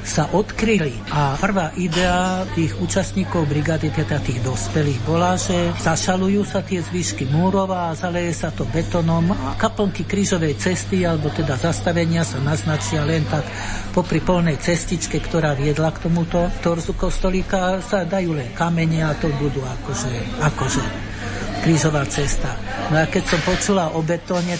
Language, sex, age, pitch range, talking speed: Slovak, male, 60-79, 145-170 Hz, 150 wpm